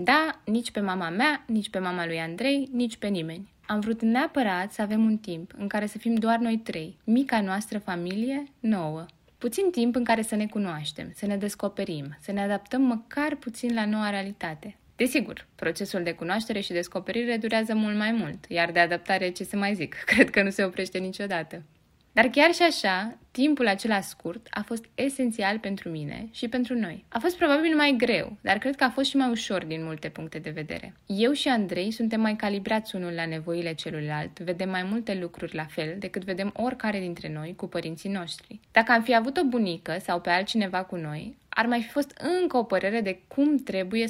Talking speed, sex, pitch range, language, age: 205 wpm, female, 180-240 Hz, Romanian, 20-39